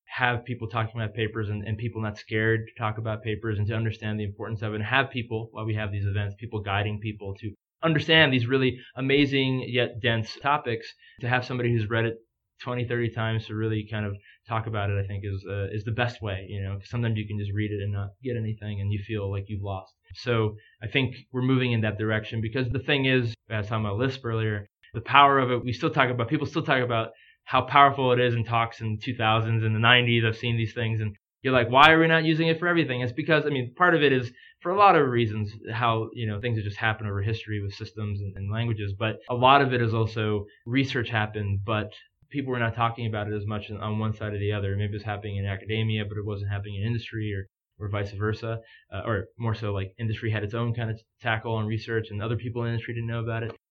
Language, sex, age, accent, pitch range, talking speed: English, male, 20-39, American, 105-120 Hz, 260 wpm